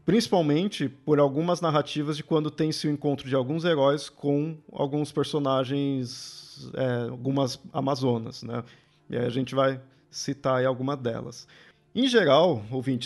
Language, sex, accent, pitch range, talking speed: Portuguese, male, Brazilian, 135-165 Hz, 140 wpm